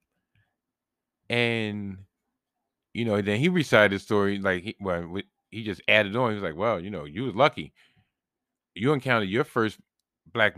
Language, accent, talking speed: English, American, 165 wpm